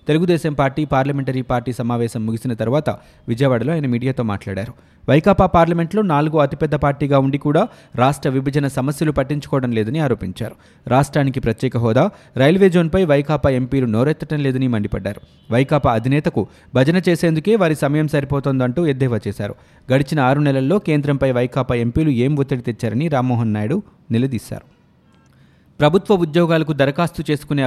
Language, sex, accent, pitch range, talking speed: Telugu, male, native, 125-160 Hz, 130 wpm